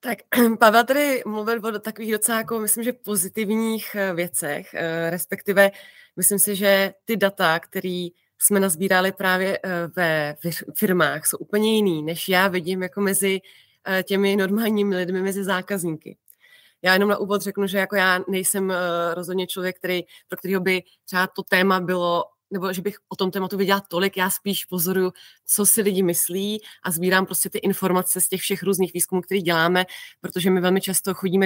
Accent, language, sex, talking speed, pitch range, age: native, Czech, female, 165 wpm, 180-195 Hz, 20-39